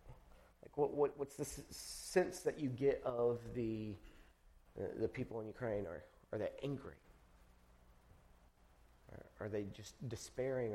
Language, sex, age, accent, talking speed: English, male, 40-59, American, 140 wpm